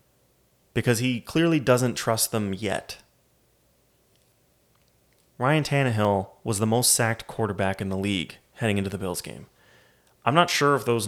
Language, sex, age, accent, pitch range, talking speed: English, male, 30-49, American, 105-140 Hz, 145 wpm